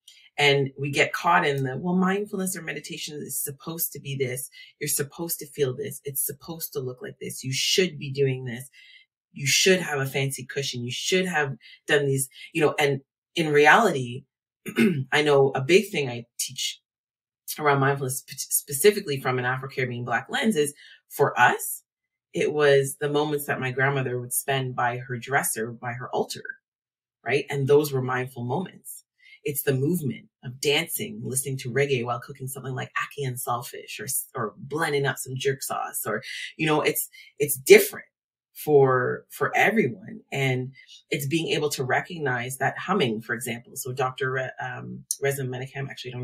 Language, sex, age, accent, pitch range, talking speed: English, female, 30-49, American, 130-150 Hz, 175 wpm